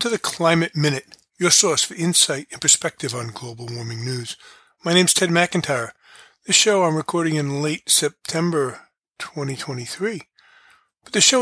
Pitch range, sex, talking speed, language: 135-170 Hz, male, 160 wpm, English